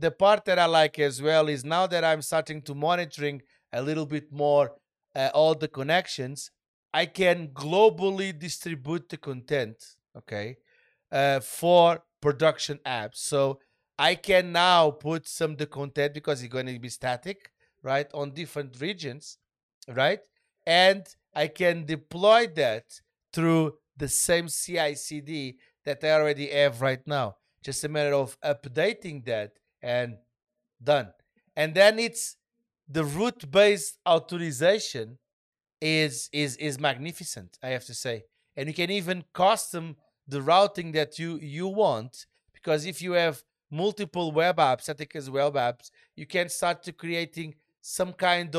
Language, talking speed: English, 150 wpm